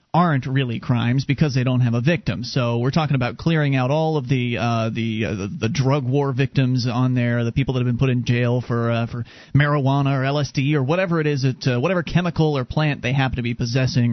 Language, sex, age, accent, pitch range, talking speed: English, male, 30-49, American, 125-155 Hz, 240 wpm